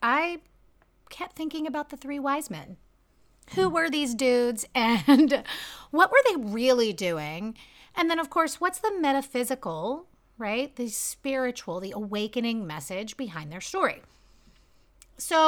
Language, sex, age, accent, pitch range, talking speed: English, female, 30-49, American, 210-295 Hz, 135 wpm